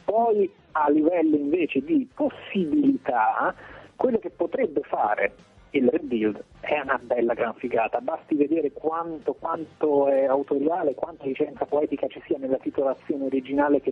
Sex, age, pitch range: male, 30-49, 130-175 Hz